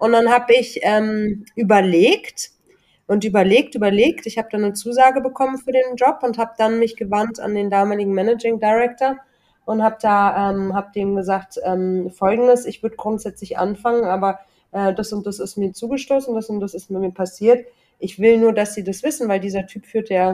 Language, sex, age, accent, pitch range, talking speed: German, female, 30-49, German, 190-230 Hz, 200 wpm